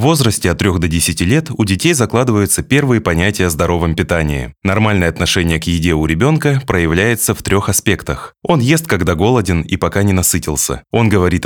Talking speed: 185 wpm